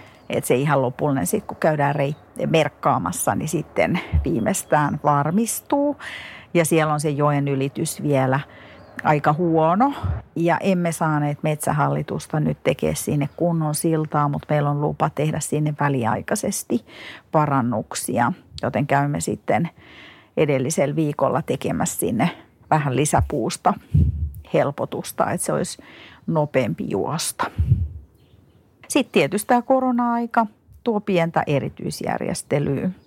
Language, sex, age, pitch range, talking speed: Finnish, female, 50-69, 135-160 Hz, 110 wpm